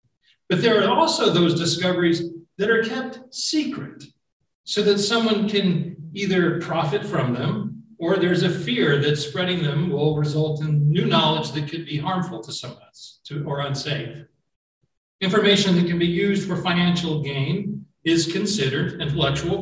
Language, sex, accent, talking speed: English, male, American, 155 wpm